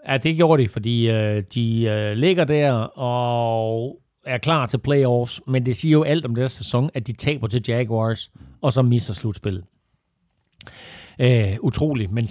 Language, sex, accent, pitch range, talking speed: Danish, male, native, 120-160 Hz, 170 wpm